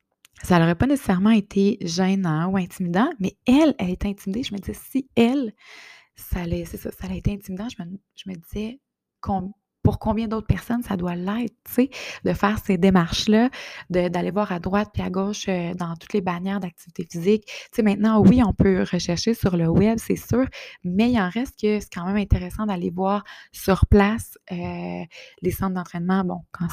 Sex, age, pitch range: female, 20-39, 170-205 Hz